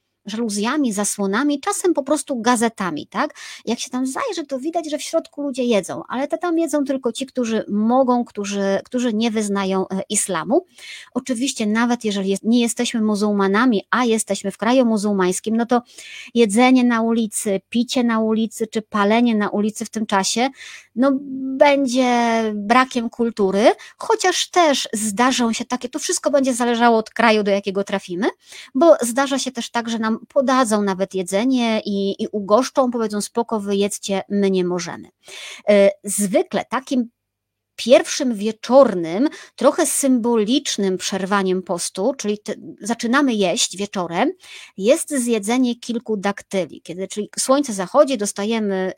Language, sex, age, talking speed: Polish, male, 30-49, 140 wpm